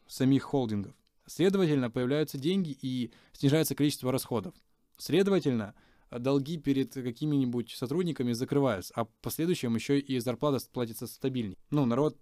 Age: 20-39